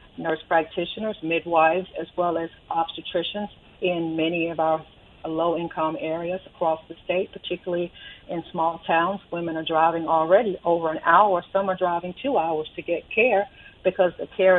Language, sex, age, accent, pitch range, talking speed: English, female, 50-69, American, 165-190 Hz, 155 wpm